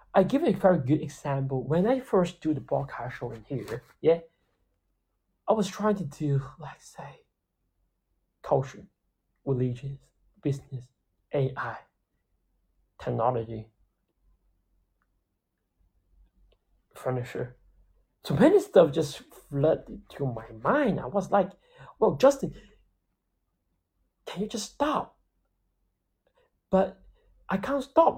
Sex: male